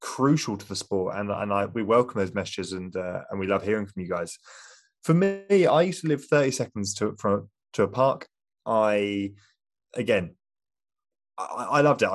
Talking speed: 195 wpm